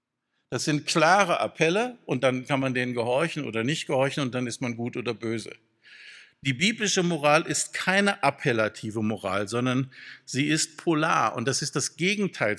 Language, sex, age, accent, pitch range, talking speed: German, male, 60-79, German, 120-160 Hz, 170 wpm